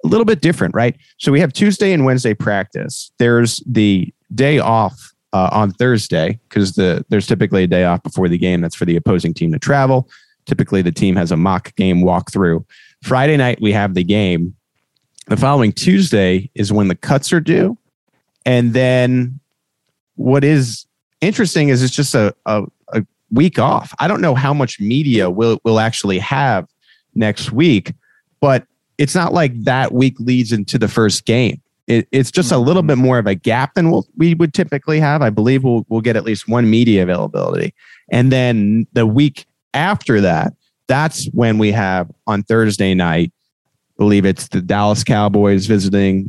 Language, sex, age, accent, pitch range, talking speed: English, male, 30-49, American, 100-135 Hz, 180 wpm